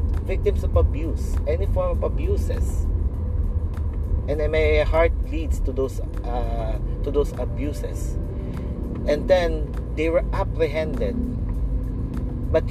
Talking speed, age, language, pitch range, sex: 110 wpm, 40-59, English, 80-95 Hz, male